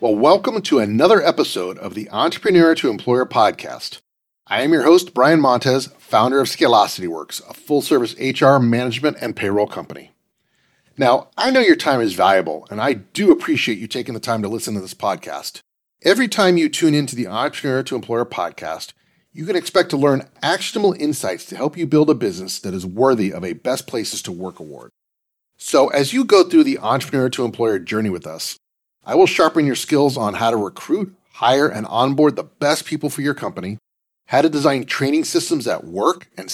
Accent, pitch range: American, 125-180 Hz